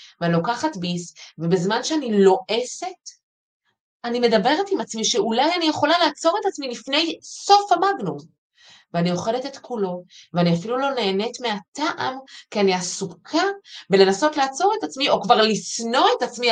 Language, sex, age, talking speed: Hebrew, female, 30-49, 145 wpm